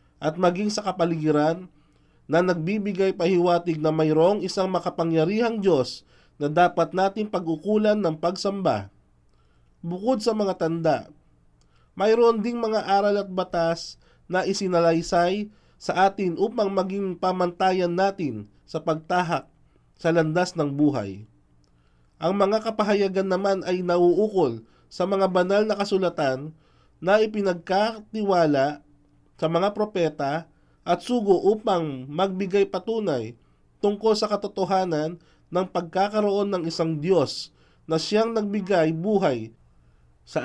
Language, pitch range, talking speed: Filipino, 155-195 Hz, 115 wpm